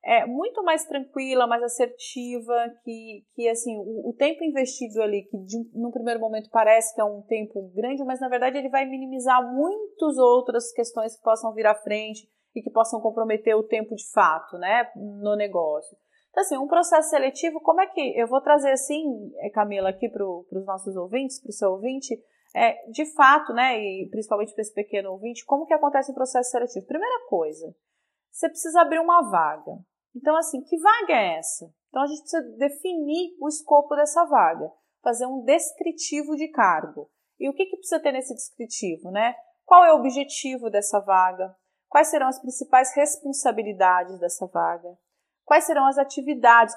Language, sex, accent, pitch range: Portuguese, female, Brazilian, 210-290 Hz